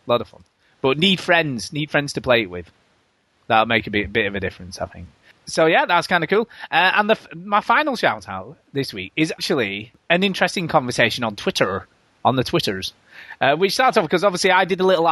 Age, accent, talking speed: 30-49, British, 225 wpm